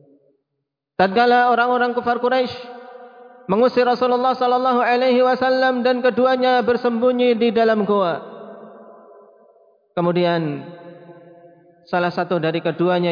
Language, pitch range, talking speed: Indonesian, 180-255 Hz, 90 wpm